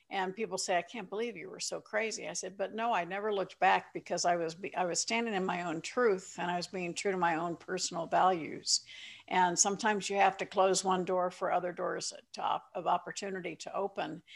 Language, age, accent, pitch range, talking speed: English, 50-69, American, 170-195 Hz, 235 wpm